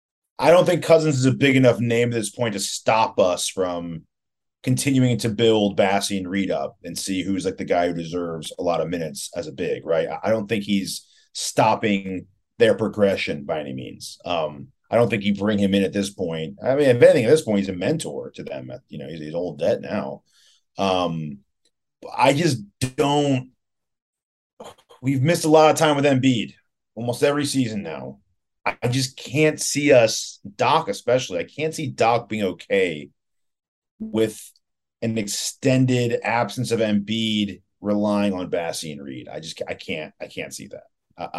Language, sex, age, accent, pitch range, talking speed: English, male, 40-59, American, 95-135 Hz, 185 wpm